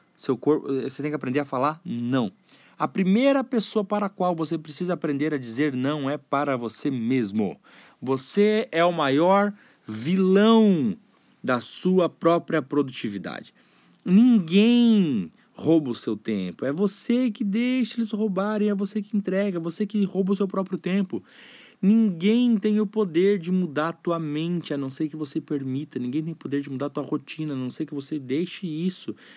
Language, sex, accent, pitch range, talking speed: Portuguese, male, Brazilian, 145-205 Hz, 180 wpm